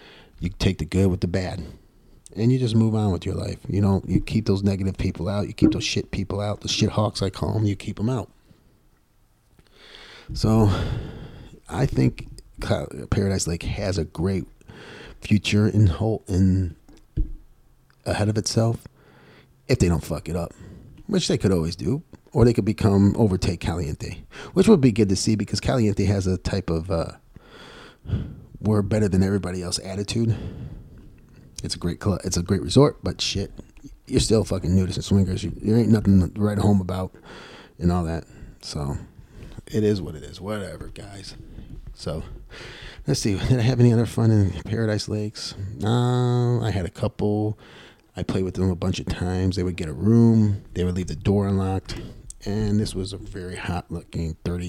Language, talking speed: English, 185 wpm